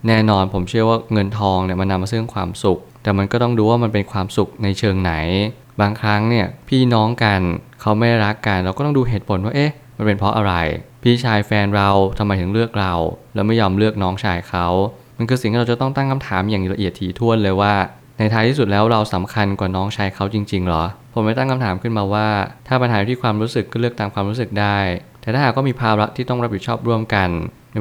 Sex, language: male, Thai